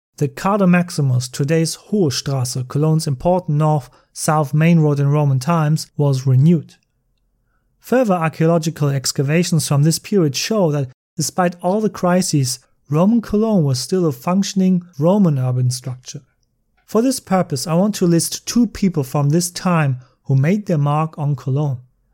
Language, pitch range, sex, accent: English, 135-175 Hz, male, German